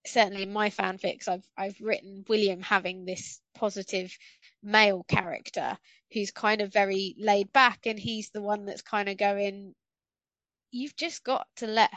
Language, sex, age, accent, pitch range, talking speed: English, female, 20-39, British, 200-235 Hz, 160 wpm